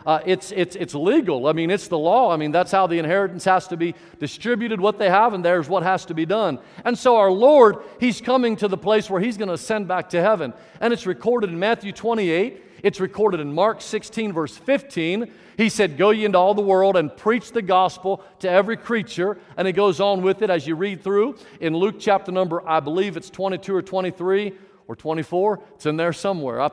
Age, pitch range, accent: 50-69, 175-215 Hz, American